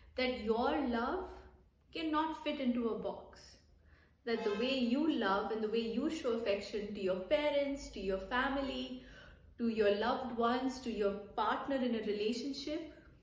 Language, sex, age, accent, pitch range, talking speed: English, female, 30-49, Indian, 205-265 Hz, 160 wpm